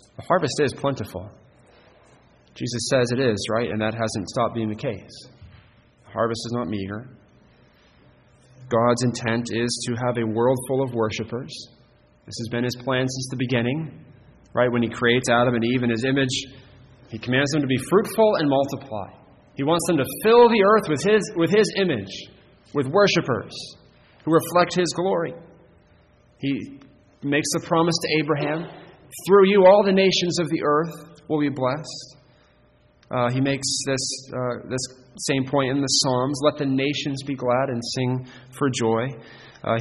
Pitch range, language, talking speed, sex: 120-150 Hz, English, 170 wpm, male